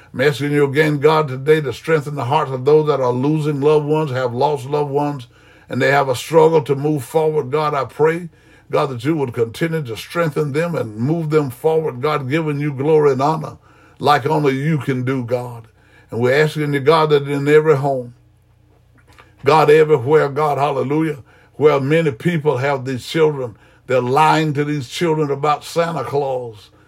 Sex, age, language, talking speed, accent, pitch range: male, 60-79, English, 185 wpm, American, 130-155 Hz